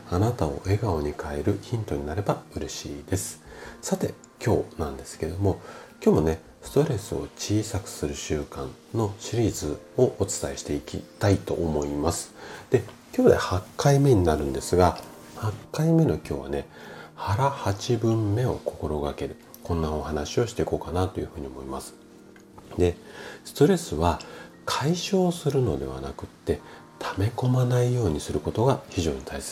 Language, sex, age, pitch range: Japanese, male, 40-59, 80-115 Hz